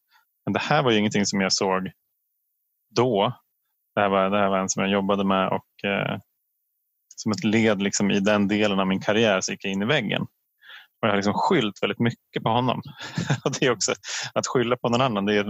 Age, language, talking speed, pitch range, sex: 20-39, Swedish, 230 wpm, 100-115 Hz, male